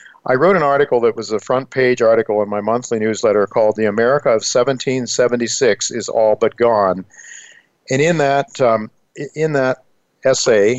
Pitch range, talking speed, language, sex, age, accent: 110-130 Hz, 160 wpm, English, male, 50-69, American